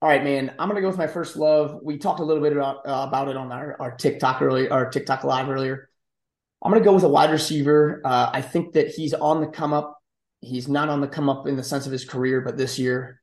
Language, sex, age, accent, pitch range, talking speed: English, male, 30-49, American, 125-150 Hz, 270 wpm